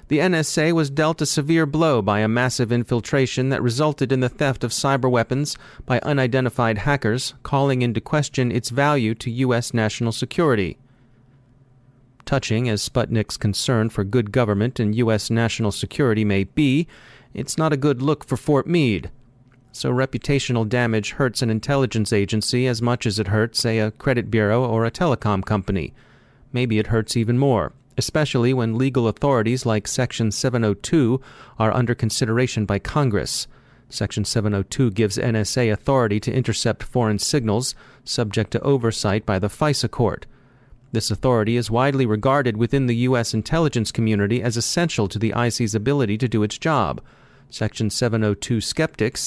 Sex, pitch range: male, 110-130 Hz